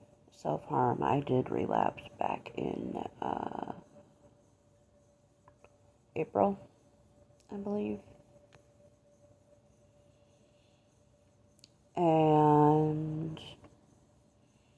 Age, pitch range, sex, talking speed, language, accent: 50-69, 115-150 Hz, female, 45 wpm, English, American